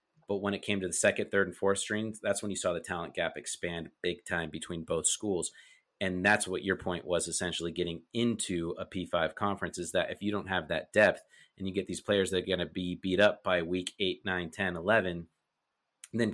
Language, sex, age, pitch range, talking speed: English, male, 30-49, 90-110 Hz, 230 wpm